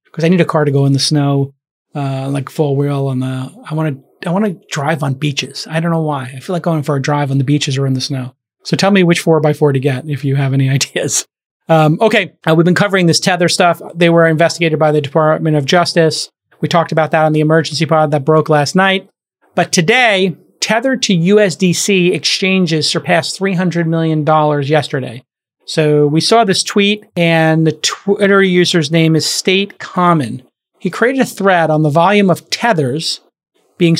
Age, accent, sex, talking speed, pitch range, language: 30-49, American, male, 215 wpm, 150-185 Hz, English